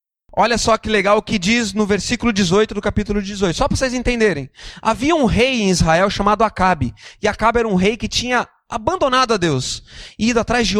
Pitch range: 195-250 Hz